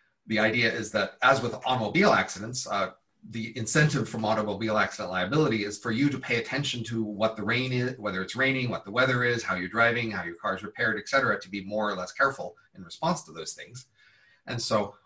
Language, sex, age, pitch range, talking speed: English, male, 40-59, 105-135 Hz, 225 wpm